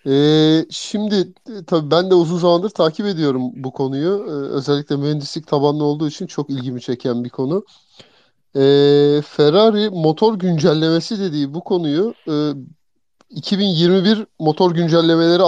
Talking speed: 130 wpm